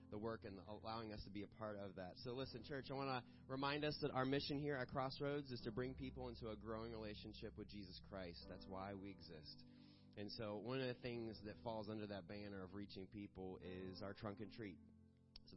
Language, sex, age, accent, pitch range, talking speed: English, male, 30-49, American, 105-130 Hz, 230 wpm